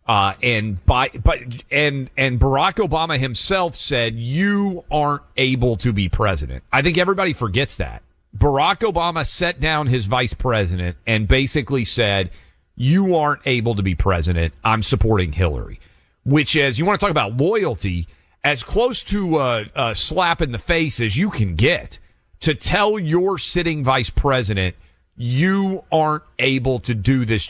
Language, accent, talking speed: English, American, 160 wpm